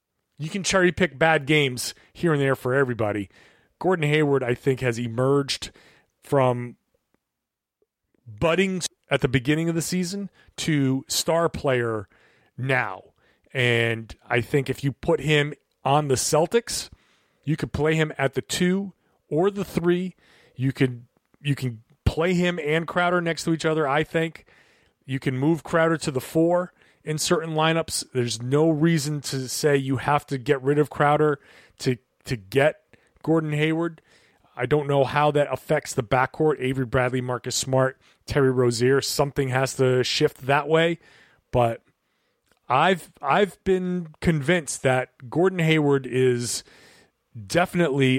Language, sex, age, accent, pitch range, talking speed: English, male, 30-49, American, 130-165 Hz, 150 wpm